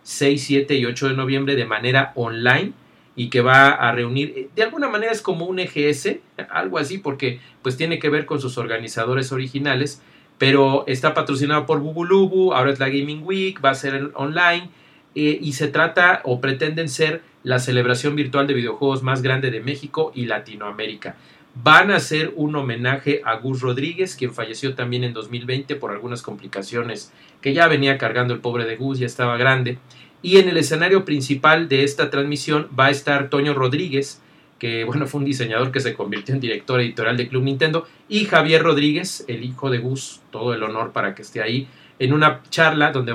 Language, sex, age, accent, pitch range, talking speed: Spanish, male, 40-59, Mexican, 125-150 Hz, 190 wpm